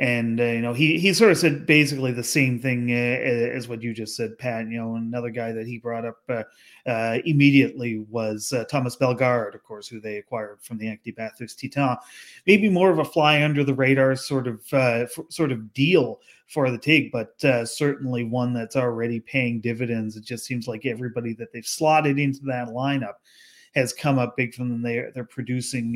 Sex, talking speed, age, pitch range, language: male, 210 wpm, 30-49, 115-135 Hz, English